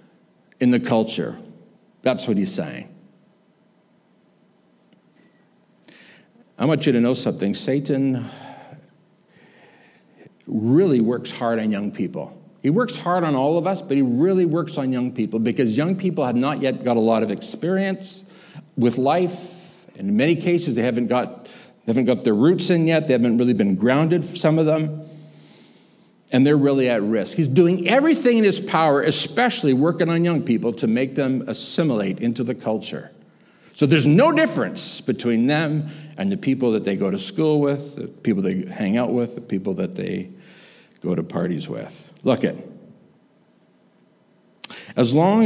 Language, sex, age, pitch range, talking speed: English, male, 60-79, 125-180 Hz, 165 wpm